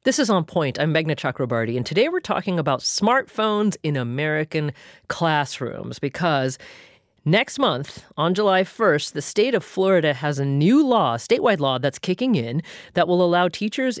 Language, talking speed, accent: English, 165 wpm, American